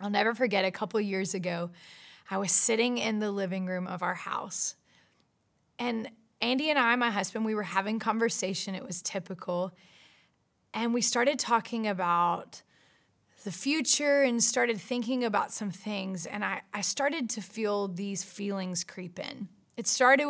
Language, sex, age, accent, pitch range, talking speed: English, female, 20-39, American, 185-235 Hz, 165 wpm